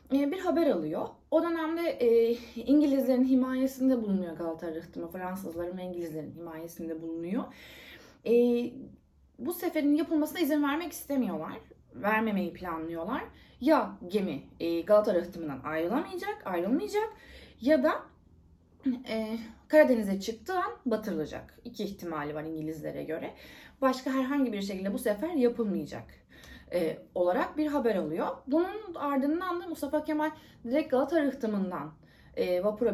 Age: 30-49